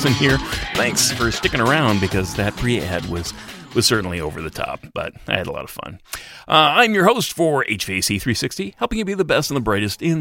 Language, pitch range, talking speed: English, 95-130 Hz, 215 wpm